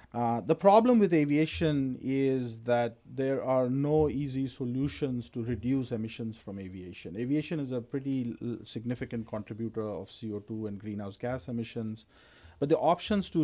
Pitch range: 110-145 Hz